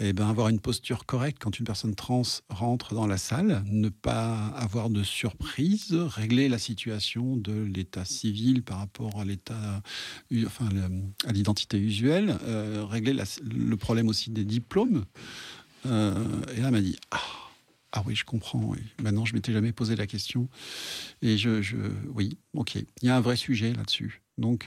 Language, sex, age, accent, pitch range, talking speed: French, male, 50-69, French, 105-125 Hz, 180 wpm